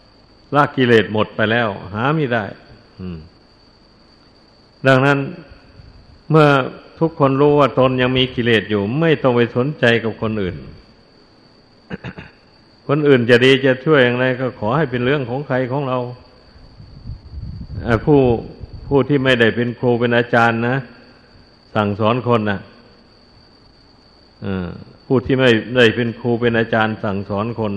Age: 60-79